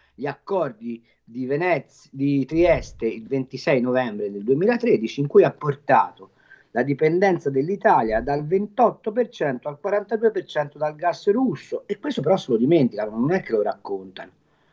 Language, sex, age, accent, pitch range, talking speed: Italian, male, 40-59, native, 130-205 Hz, 145 wpm